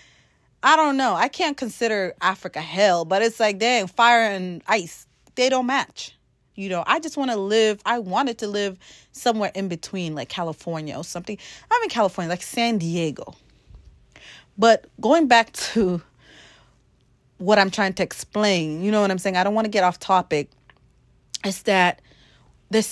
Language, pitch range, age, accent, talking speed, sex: English, 165-225 Hz, 30-49, American, 175 wpm, female